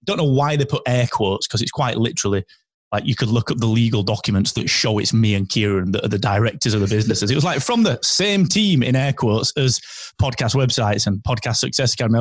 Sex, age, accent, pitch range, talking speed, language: male, 30-49, British, 115-150 Hz, 245 wpm, English